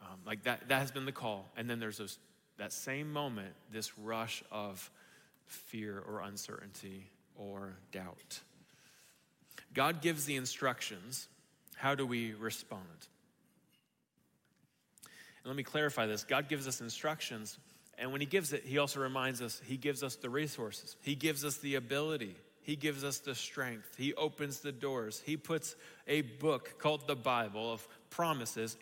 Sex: male